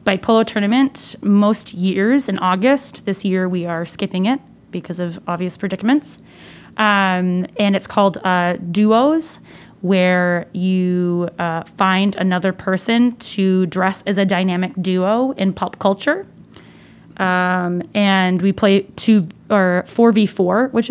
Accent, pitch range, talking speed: American, 185-210 Hz, 140 wpm